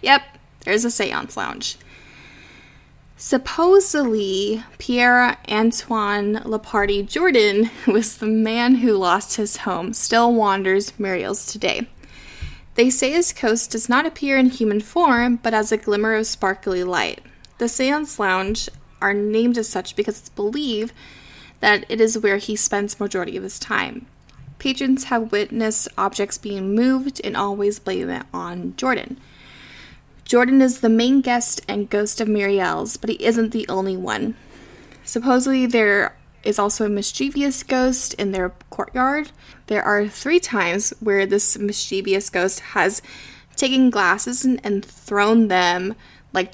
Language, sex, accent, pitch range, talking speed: English, female, American, 200-240 Hz, 145 wpm